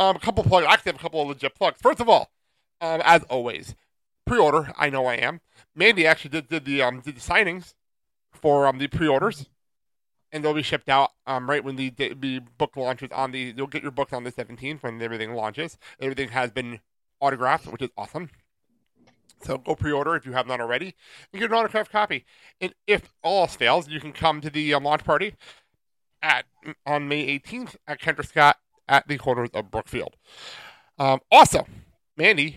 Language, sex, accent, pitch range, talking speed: English, male, American, 130-160 Hz, 200 wpm